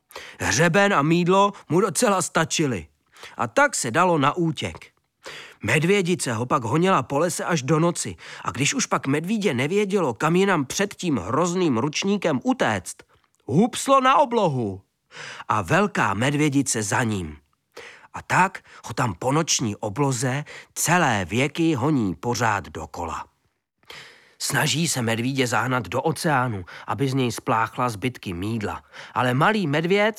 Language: Czech